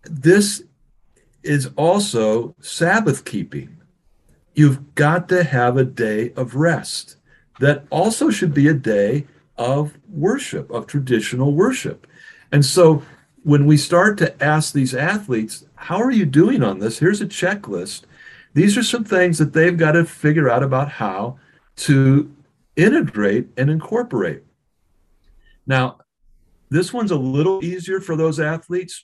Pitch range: 115-160 Hz